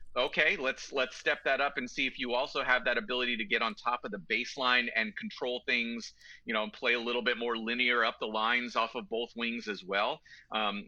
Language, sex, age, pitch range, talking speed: English, male, 30-49, 115-130 Hz, 230 wpm